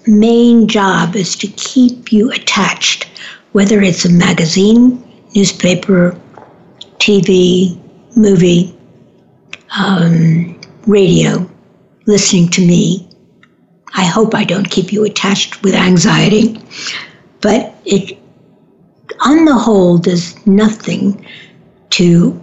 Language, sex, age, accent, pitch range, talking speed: English, female, 60-79, American, 180-210 Hz, 95 wpm